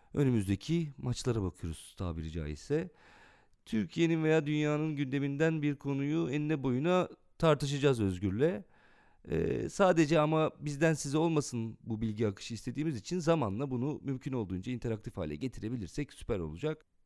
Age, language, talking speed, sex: 40-59, Turkish, 125 wpm, male